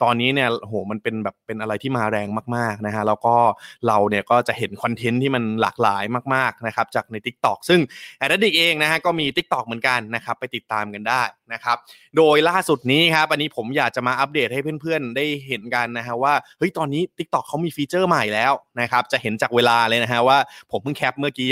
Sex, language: male, Thai